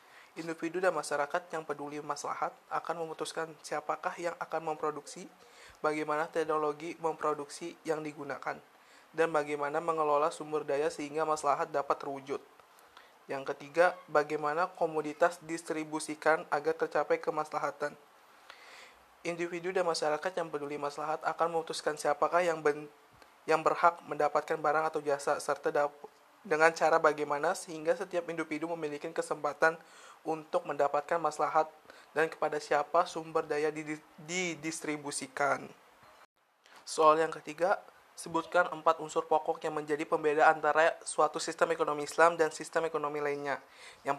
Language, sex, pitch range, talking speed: Indonesian, male, 150-165 Hz, 120 wpm